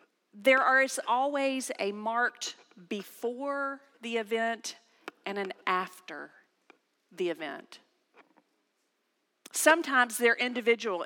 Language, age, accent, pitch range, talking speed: English, 40-59, American, 220-280 Hz, 90 wpm